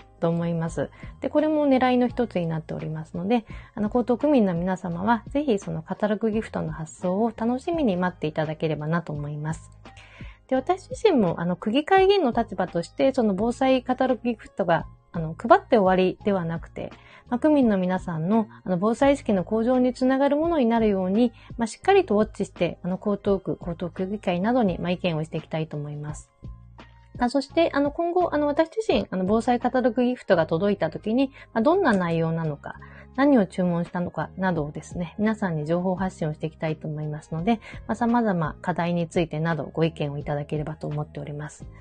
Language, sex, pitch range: Japanese, female, 160-245 Hz